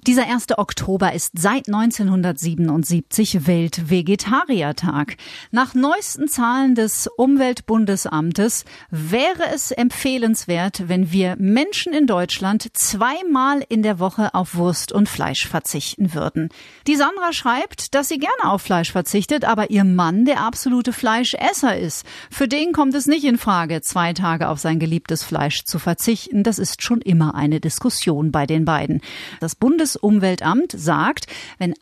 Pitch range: 180-265 Hz